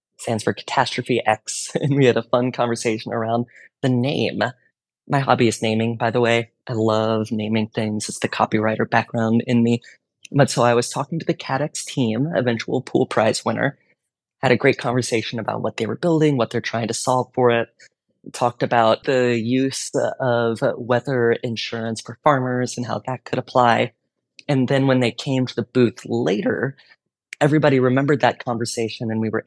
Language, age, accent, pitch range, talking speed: English, 20-39, American, 115-130 Hz, 180 wpm